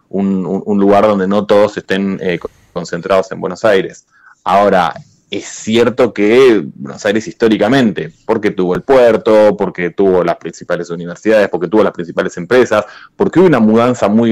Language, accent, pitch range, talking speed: Spanish, Argentinian, 95-115 Hz, 160 wpm